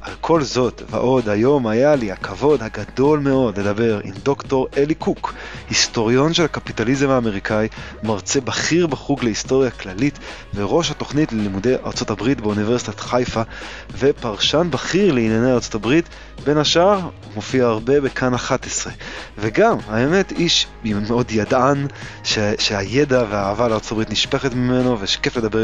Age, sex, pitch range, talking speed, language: 20-39, male, 105-135 Hz, 125 wpm, Hebrew